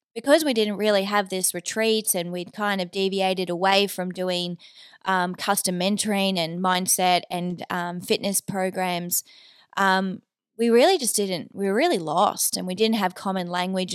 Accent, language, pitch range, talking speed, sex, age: Australian, English, 180-205 Hz, 170 wpm, female, 20-39